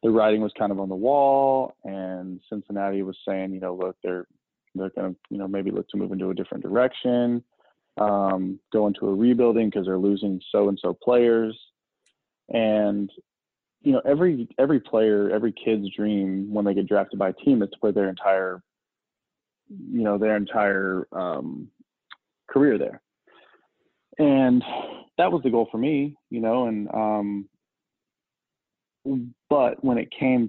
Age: 20-39